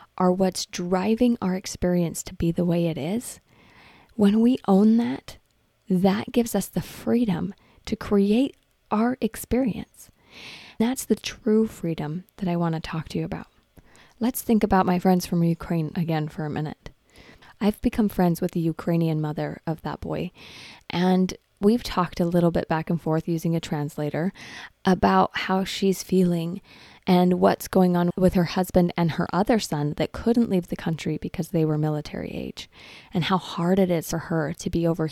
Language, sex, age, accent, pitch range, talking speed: English, female, 20-39, American, 170-215 Hz, 175 wpm